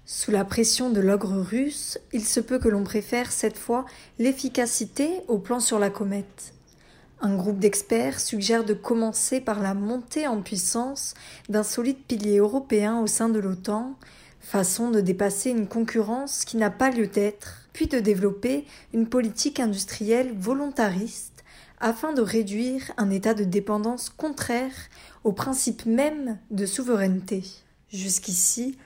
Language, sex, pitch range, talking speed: French, female, 205-245 Hz, 145 wpm